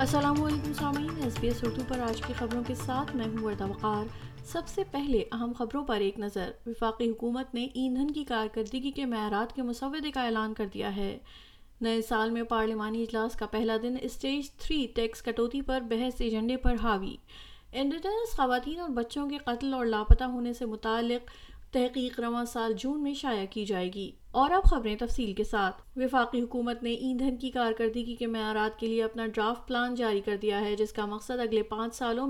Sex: female